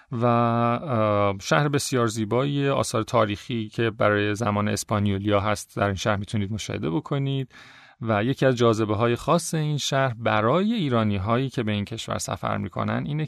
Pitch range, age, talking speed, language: 105-140 Hz, 40-59, 160 wpm, Persian